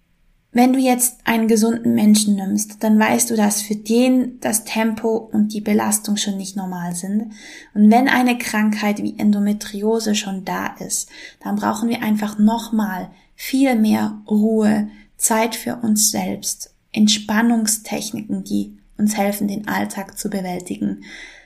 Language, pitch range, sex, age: German, 210-235 Hz, female, 10-29